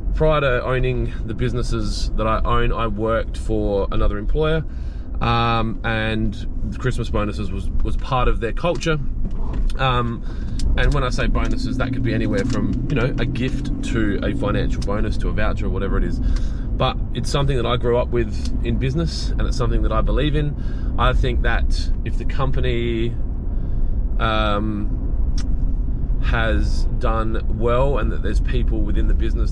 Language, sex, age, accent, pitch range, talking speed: English, male, 20-39, Australian, 95-120 Hz, 170 wpm